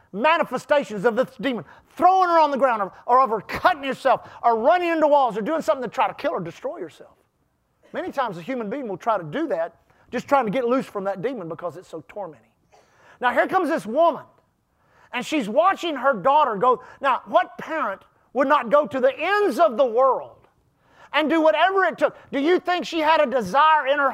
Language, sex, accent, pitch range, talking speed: English, male, American, 240-325 Hz, 220 wpm